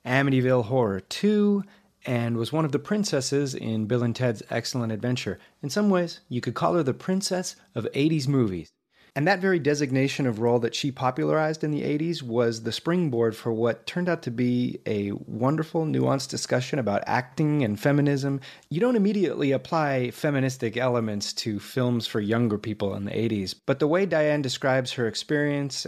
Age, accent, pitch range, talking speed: 30-49, American, 110-150 Hz, 180 wpm